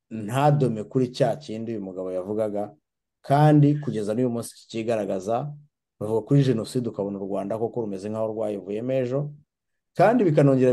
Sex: male